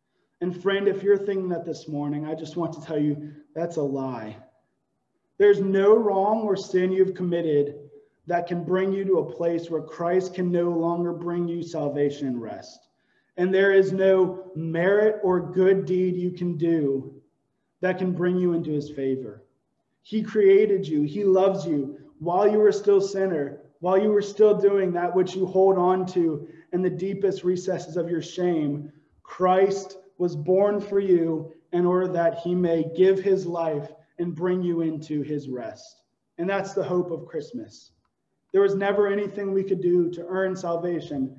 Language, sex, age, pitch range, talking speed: English, male, 20-39, 160-190 Hz, 180 wpm